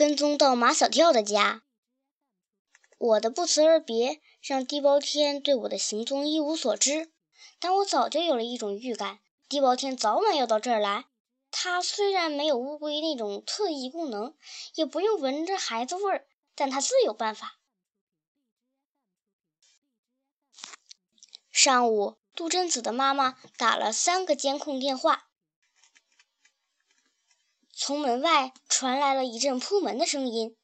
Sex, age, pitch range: male, 10-29, 240-330 Hz